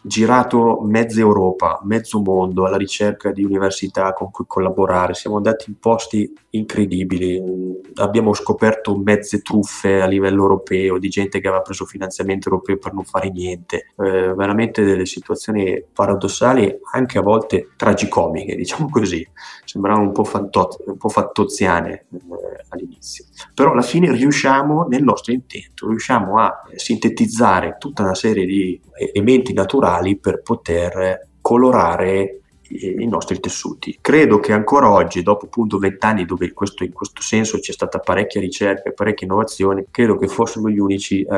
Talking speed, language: 150 wpm, Italian